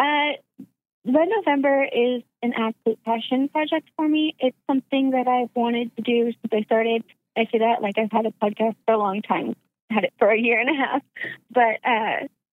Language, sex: English, female